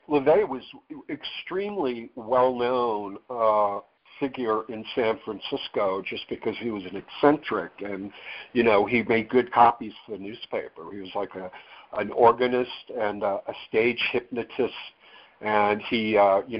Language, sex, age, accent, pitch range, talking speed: English, male, 60-79, American, 100-120 Hz, 145 wpm